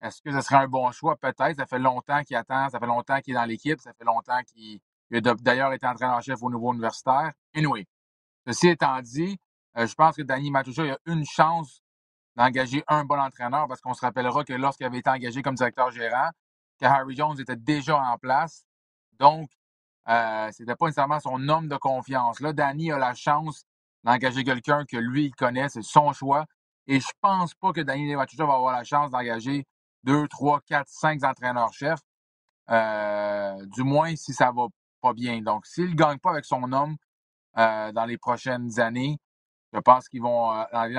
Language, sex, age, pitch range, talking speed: French, male, 30-49, 120-145 Hz, 195 wpm